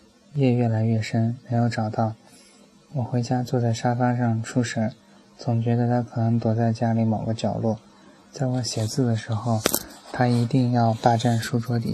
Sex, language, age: male, Chinese, 20-39